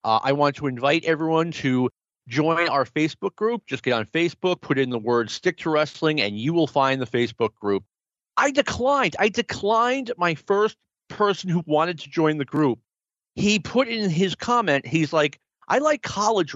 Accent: American